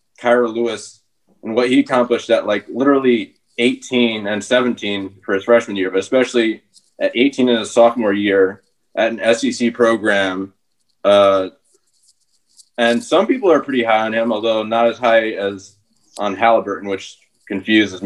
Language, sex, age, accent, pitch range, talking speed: English, male, 20-39, American, 100-125 Hz, 155 wpm